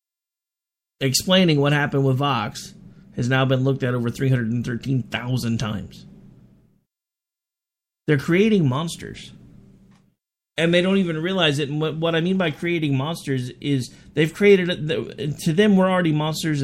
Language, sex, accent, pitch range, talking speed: English, male, American, 135-190 Hz, 135 wpm